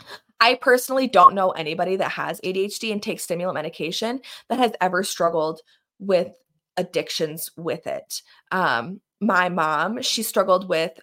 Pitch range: 180-220 Hz